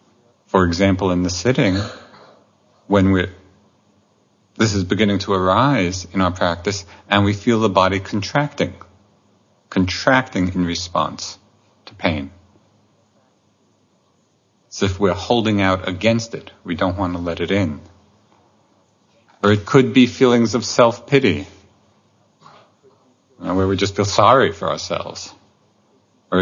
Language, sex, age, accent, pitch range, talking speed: English, male, 50-69, American, 95-120 Hz, 130 wpm